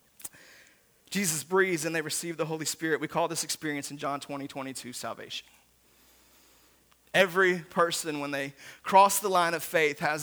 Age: 30-49